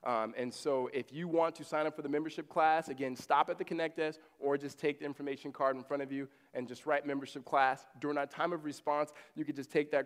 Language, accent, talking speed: English, American, 265 wpm